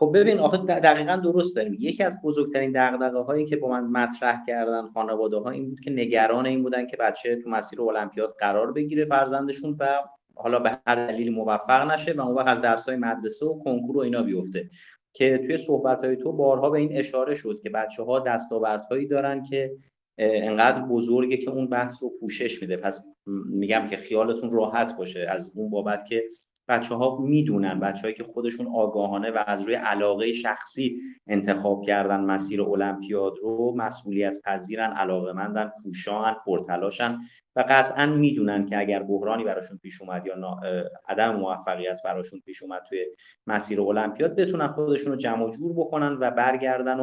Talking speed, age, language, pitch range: 165 wpm, 30-49, Persian, 105-135 Hz